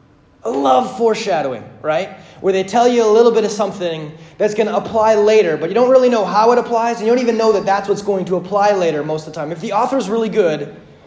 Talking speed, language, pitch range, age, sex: 255 wpm, English, 185-235 Hz, 30-49, male